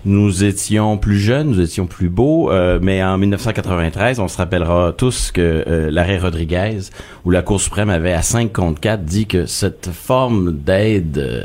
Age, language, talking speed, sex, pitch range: 30-49, French, 180 wpm, male, 90-115 Hz